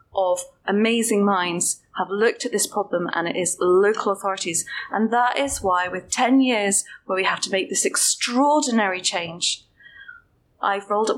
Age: 20-39